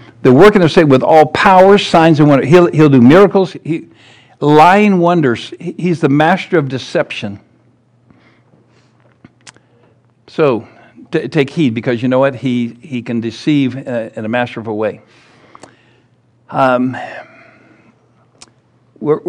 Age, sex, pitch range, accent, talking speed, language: 60-79, male, 120-155 Hz, American, 110 wpm, English